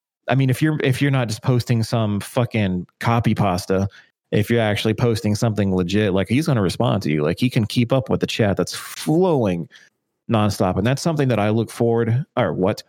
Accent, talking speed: American, 215 wpm